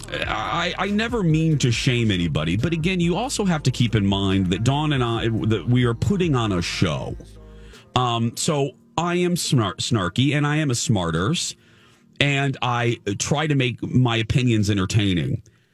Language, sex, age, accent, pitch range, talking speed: English, male, 40-59, American, 115-160 Hz, 175 wpm